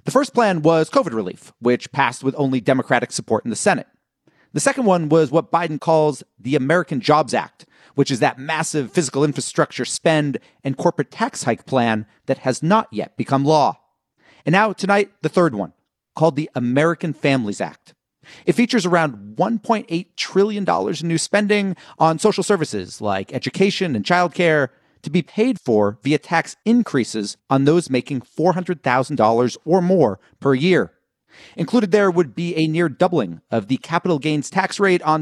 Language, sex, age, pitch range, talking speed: English, male, 40-59, 135-180 Hz, 175 wpm